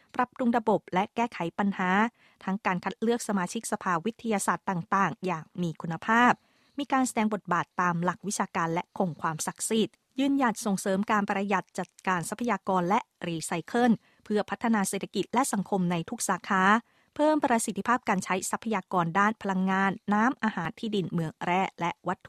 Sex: female